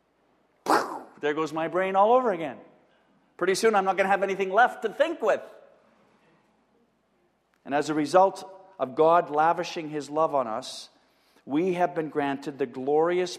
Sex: male